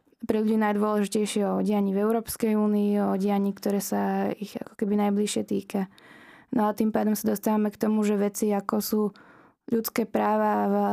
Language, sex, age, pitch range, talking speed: Slovak, female, 20-39, 205-225 Hz, 175 wpm